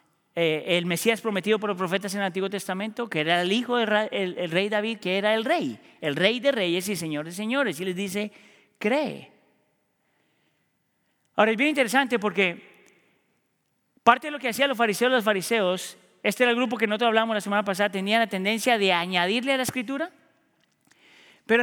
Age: 40-59